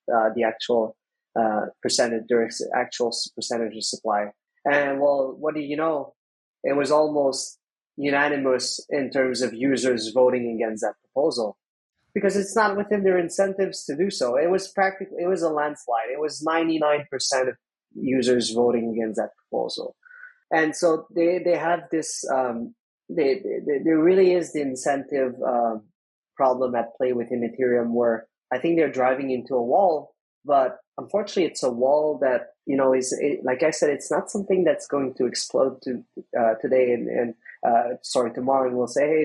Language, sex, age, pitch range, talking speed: English, male, 30-49, 120-165 Hz, 175 wpm